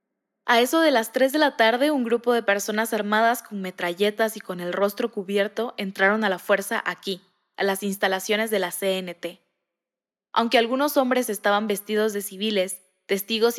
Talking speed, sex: 170 wpm, female